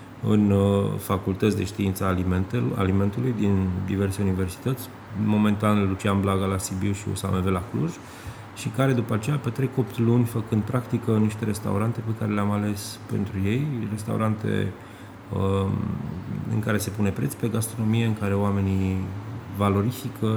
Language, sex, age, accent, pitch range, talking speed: Romanian, male, 30-49, native, 100-115 Hz, 145 wpm